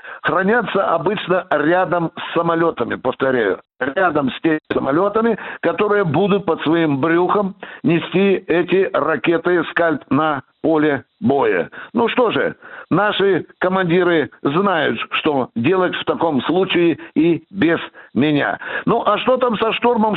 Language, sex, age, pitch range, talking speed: Russian, male, 60-79, 165-210 Hz, 125 wpm